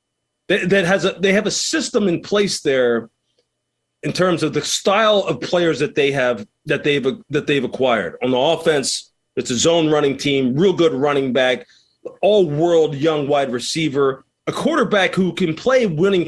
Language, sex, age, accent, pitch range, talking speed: English, male, 40-59, American, 140-190 Hz, 175 wpm